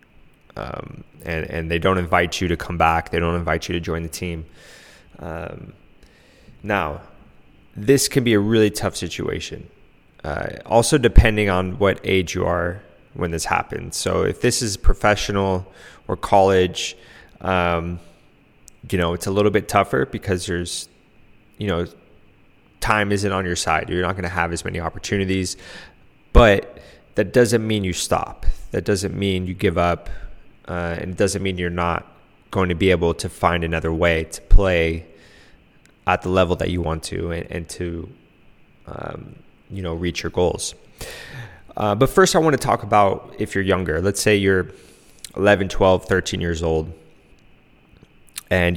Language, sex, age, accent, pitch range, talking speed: English, male, 20-39, American, 85-100 Hz, 165 wpm